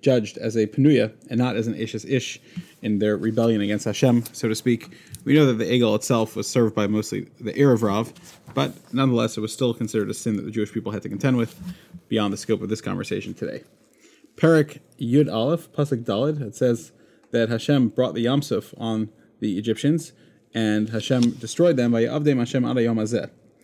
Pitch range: 110-135 Hz